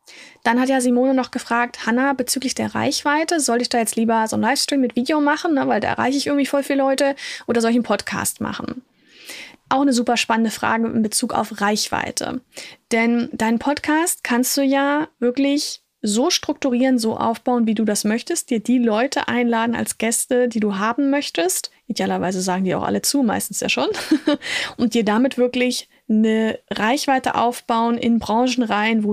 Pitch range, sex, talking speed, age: 205-255 Hz, female, 185 wpm, 10-29